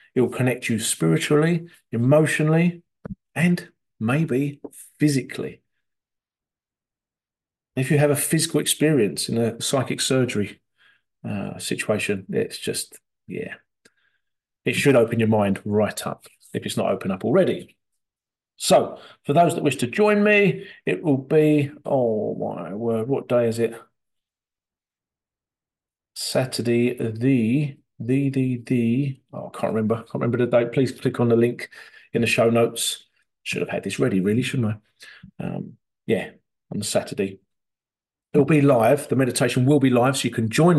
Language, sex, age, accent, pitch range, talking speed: English, male, 40-59, British, 115-150 Hz, 150 wpm